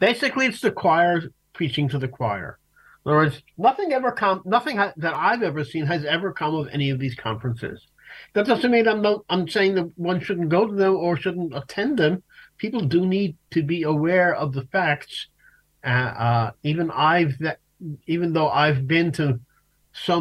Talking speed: 195 wpm